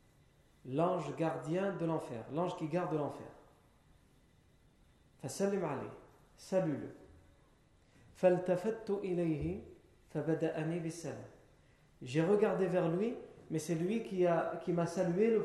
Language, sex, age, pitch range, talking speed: French, male, 40-59, 145-180 Hz, 95 wpm